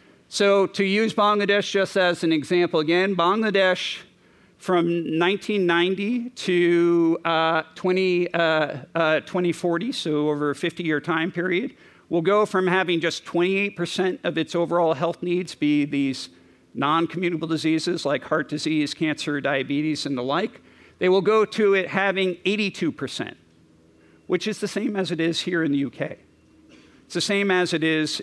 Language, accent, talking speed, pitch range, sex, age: English, American, 155 wpm, 155-185 Hz, male, 50-69